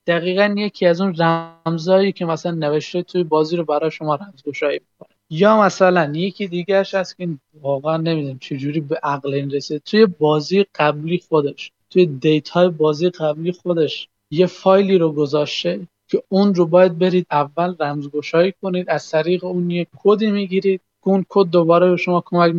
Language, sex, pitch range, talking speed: Persian, male, 150-185 Hz, 165 wpm